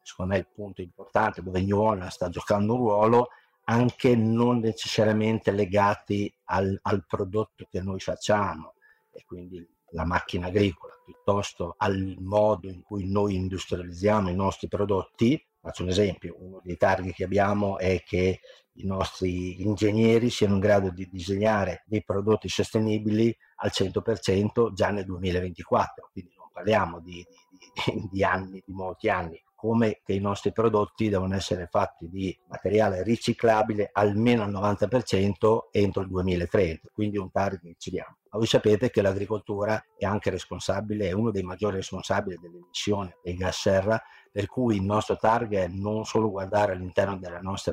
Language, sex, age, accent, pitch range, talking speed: Italian, male, 50-69, native, 95-110 Hz, 160 wpm